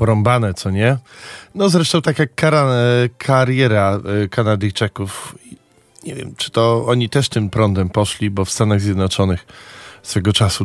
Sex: male